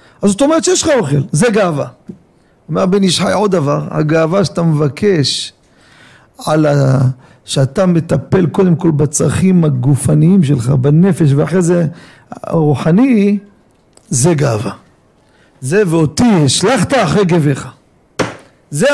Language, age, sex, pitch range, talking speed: Hebrew, 50-69, male, 150-225 Hz, 115 wpm